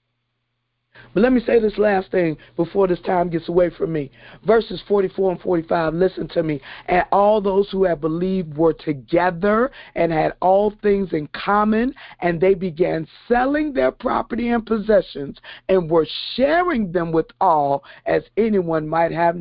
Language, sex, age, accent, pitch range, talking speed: English, male, 50-69, American, 150-200 Hz, 165 wpm